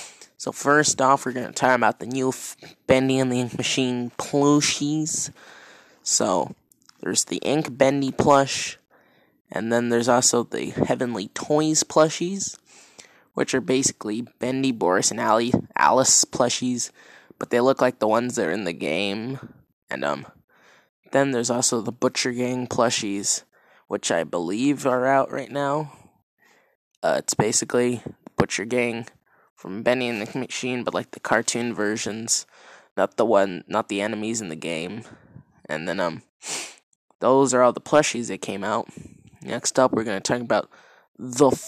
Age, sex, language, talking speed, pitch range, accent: 20-39, male, English, 155 wpm, 120-140 Hz, American